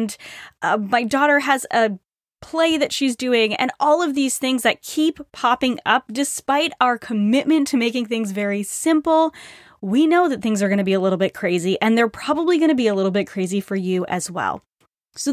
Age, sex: 10-29, female